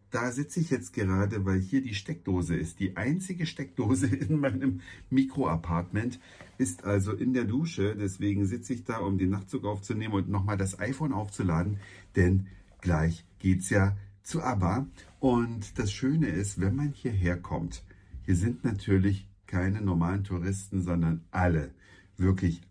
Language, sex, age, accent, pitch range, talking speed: German, male, 50-69, German, 95-125 Hz, 150 wpm